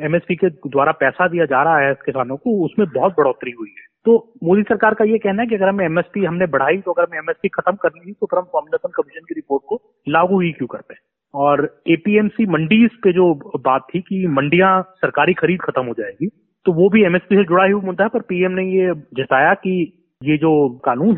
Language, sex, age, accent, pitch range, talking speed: Hindi, male, 30-49, native, 155-195 Hz, 225 wpm